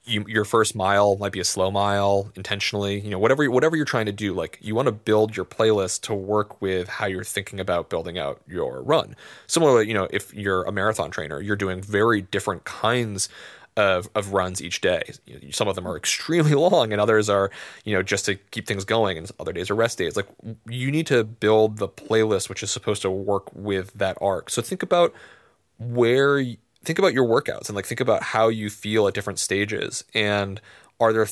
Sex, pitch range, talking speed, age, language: male, 95-115 Hz, 220 wpm, 20-39, English